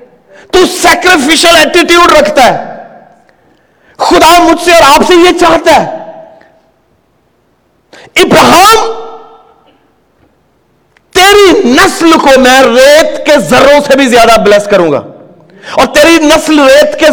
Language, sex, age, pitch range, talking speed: Urdu, male, 50-69, 275-335 Hz, 115 wpm